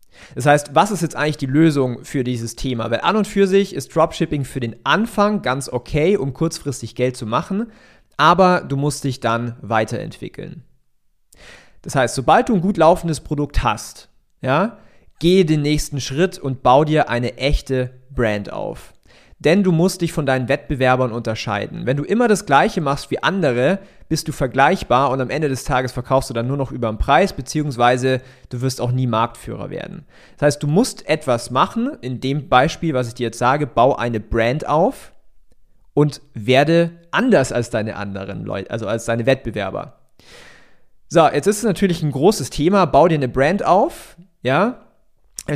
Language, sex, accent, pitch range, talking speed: German, male, German, 125-160 Hz, 180 wpm